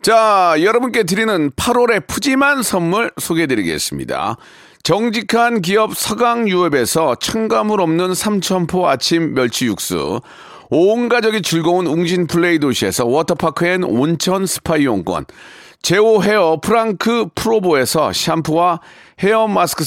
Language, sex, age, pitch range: Korean, male, 40-59, 165-220 Hz